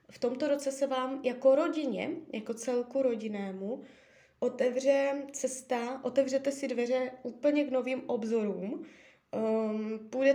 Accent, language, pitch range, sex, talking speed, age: native, Czech, 205-270 Hz, female, 115 wpm, 20-39